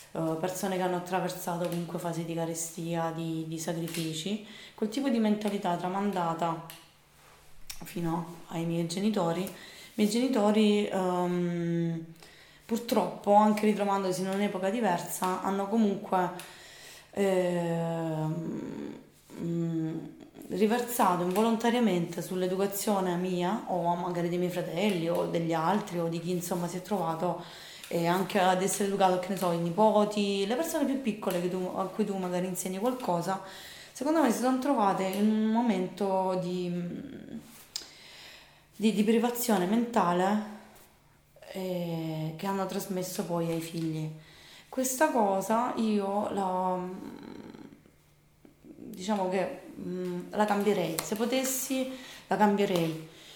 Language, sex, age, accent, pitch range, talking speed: Italian, female, 20-39, native, 175-210 Hz, 115 wpm